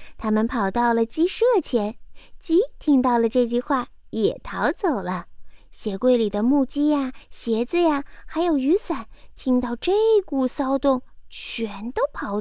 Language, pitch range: Chinese, 215-320 Hz